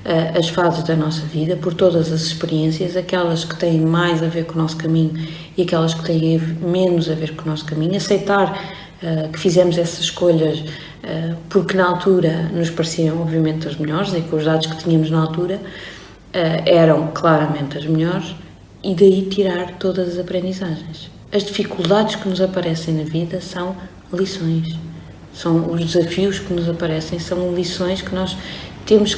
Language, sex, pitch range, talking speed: Portuguese, female, 160-180 Hz, 175 wpm